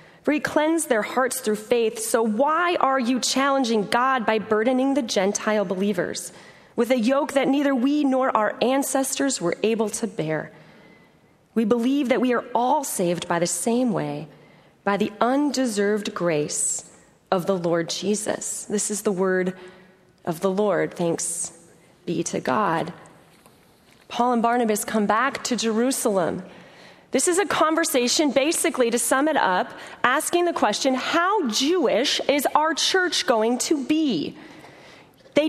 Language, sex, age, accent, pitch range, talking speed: English, female, 30-49, American, 210-305 Hz, 150 wpm